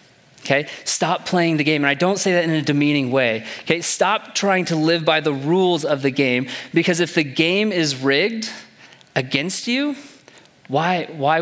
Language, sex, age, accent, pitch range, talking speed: English, male, 30-49, American, 140-180 Hz, 185 wpm